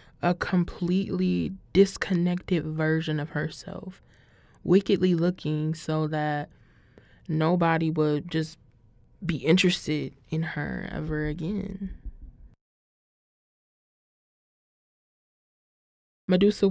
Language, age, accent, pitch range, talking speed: English, 20-39, American, 160-195 Hz, 70 wpm